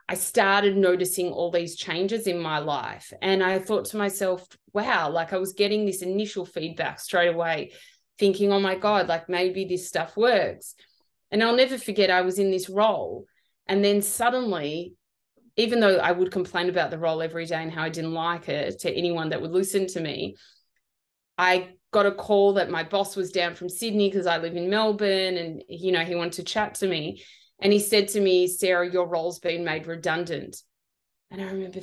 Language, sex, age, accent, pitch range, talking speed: English, female, 20-39, Australian, 180-245 Hz, 200 wpm